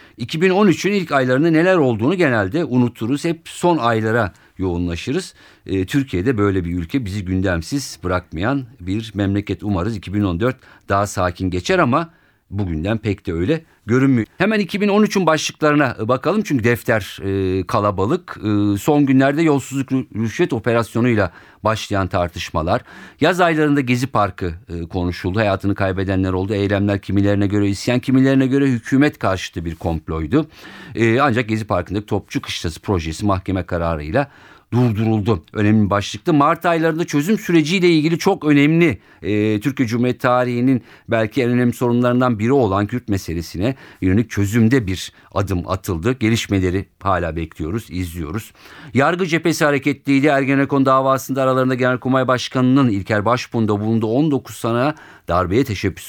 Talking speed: 130 wpm